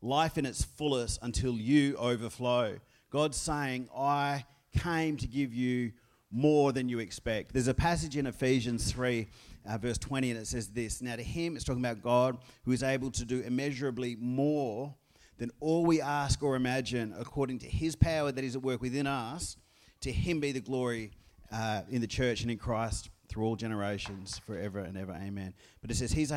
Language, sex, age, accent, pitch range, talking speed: English, male, 30-49, Australian, 110-140 Hz, 190 wpm